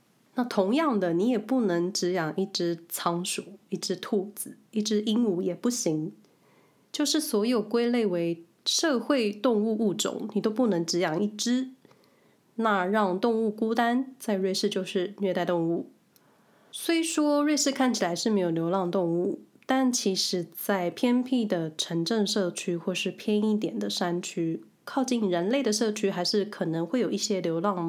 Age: 20-39